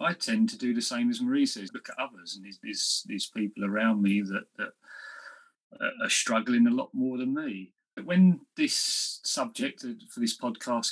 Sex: male